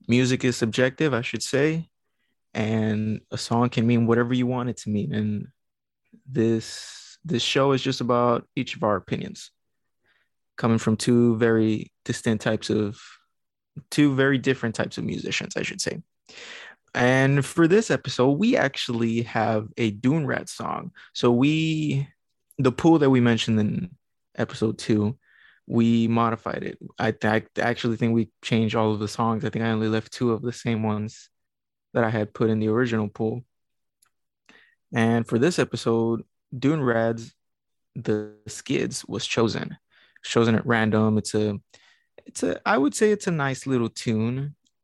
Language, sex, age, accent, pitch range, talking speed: English, male, 20-39, American, 110-125 Hz, 165 wpm